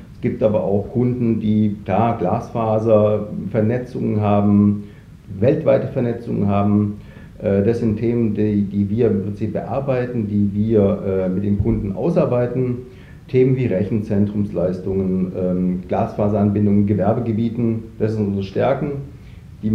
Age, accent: 50-69, German